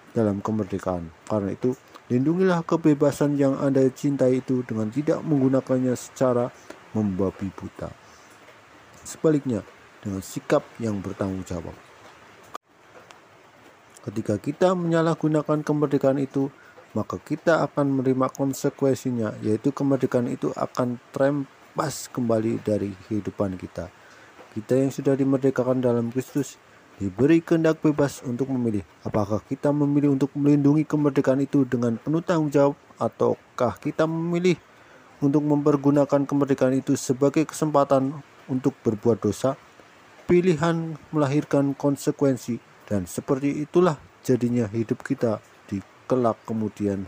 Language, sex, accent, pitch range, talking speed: English, male, Indonesian, 110-145 Hz, 110 wpm